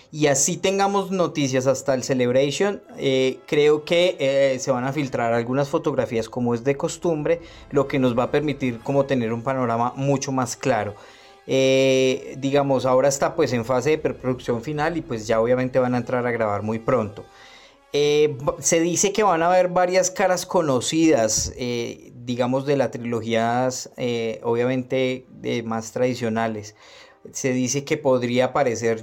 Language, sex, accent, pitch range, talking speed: Spanish, male, Colombian, 120-145 Hz, 165 wpm